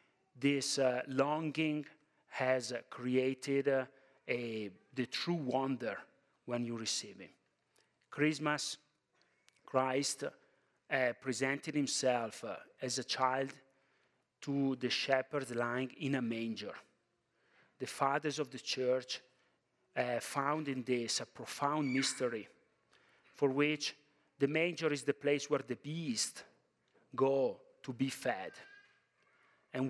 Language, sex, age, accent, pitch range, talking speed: English, male, 40-59, Italian, 125-145 Hz, 115 wpm